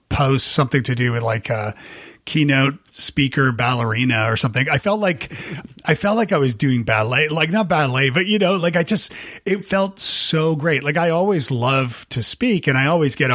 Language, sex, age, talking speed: English, male, 40-59, 200 wpm